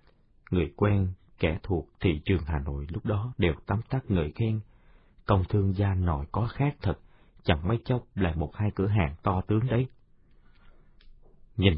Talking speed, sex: 175 wpm, male